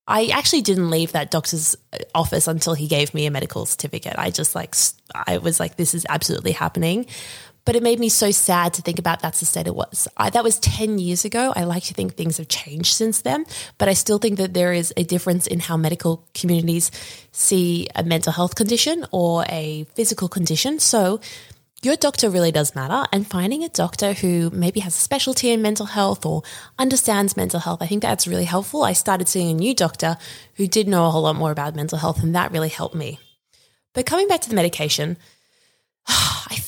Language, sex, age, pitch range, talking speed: English, female, 20-39, 165-215 Hz, 215 wpm